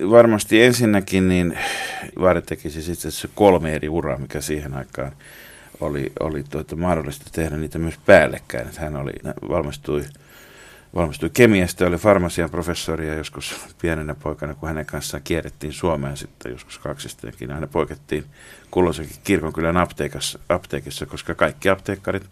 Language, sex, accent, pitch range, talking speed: Finnish, male, native, 75-90 Hz, 130 wpm